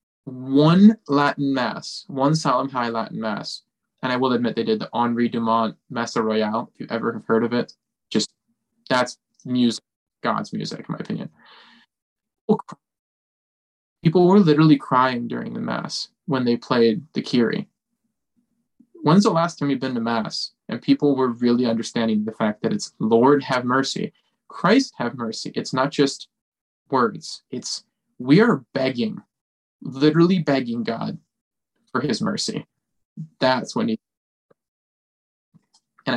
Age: 20-39